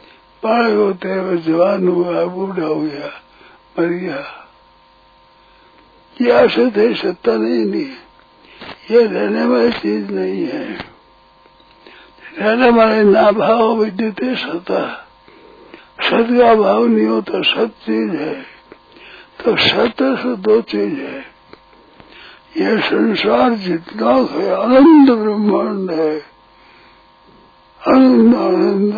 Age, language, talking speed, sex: 60-79, Hindi, 100 wpm, male